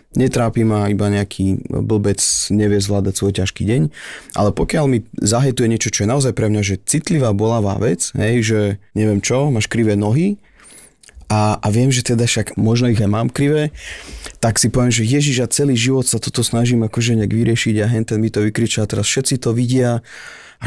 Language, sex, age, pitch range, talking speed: Slovak, male, 30-49, 100-115 Hz, 190 wpm